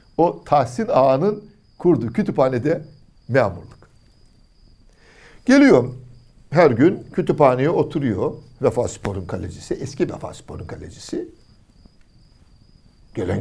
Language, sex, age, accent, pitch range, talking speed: Turkish, male, 60-79, native, 115-170 Hz, 85 wpm